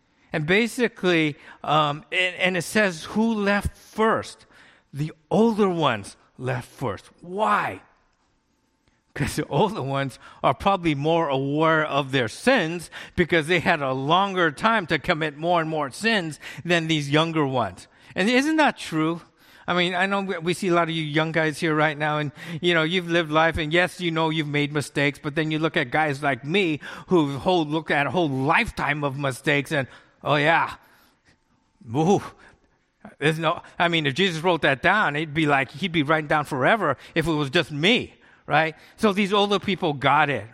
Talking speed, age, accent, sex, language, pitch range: 185 wpm, 50-69, American, male, English, 140-175 Hz